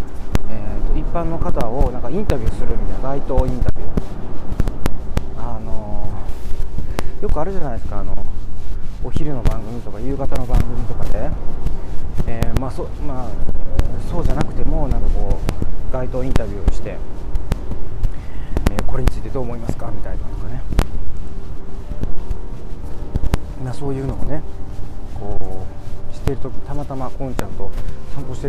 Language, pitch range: Japanese, 95-115 Hz